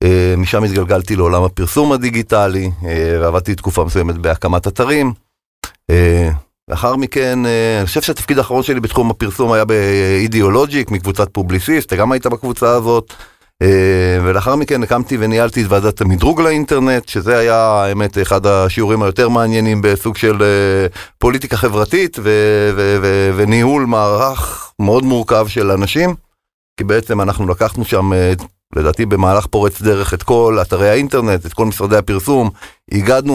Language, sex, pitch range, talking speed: Hebrew, male, 100-125 Hz, 135 wpm